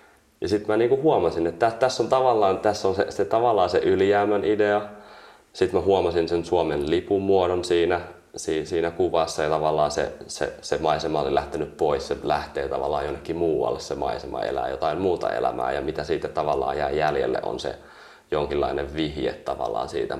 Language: Finnish